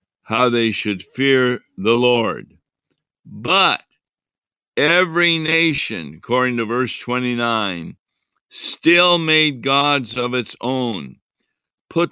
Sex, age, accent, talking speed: male, 50-69, American, 100 wpm